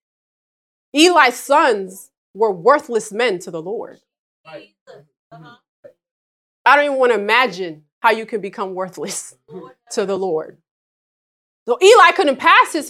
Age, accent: 20-39, American